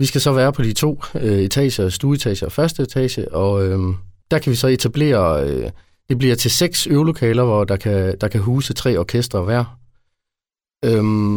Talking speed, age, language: 185 wpm, 30-49, Danish